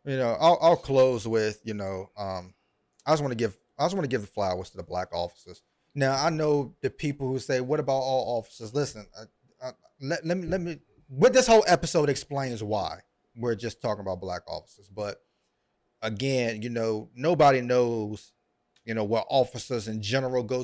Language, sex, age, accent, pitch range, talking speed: English, male, 30-49, American, 105-130 Hz, 200 wpm